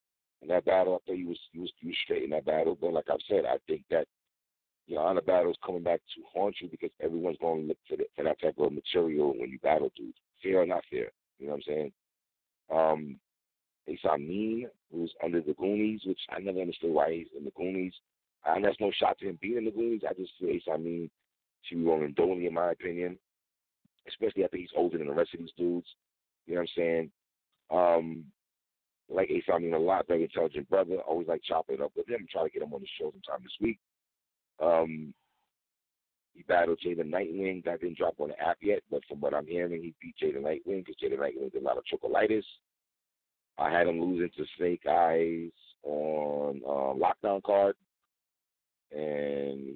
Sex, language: male, English